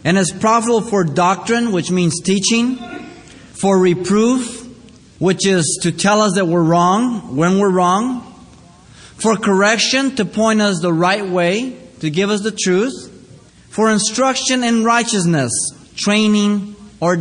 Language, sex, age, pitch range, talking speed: English, male, 30-49, 150-215 Hz, 140 wpm